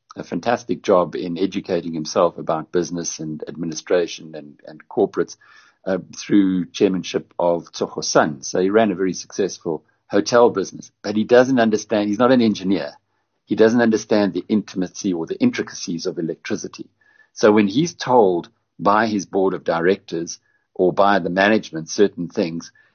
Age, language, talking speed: 60-79, English, 155 wpm